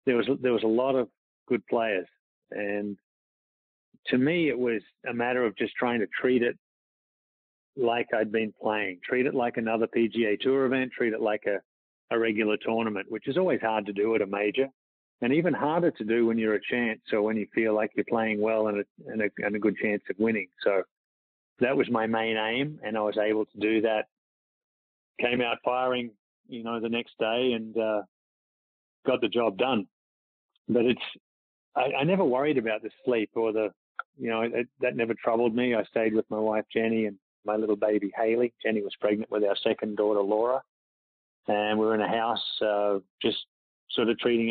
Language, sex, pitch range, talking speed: English, male, 105-115 Hz, 200 wpm